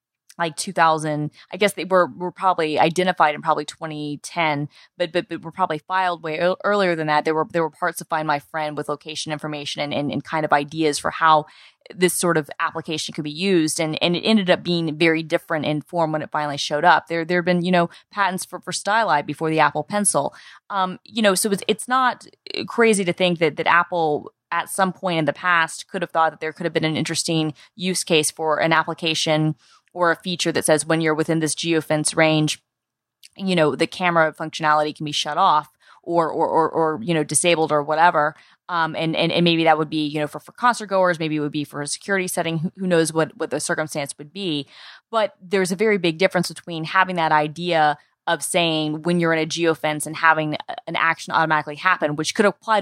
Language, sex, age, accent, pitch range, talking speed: English, female, 20-39, American, 155-180 Hz, 225 wpm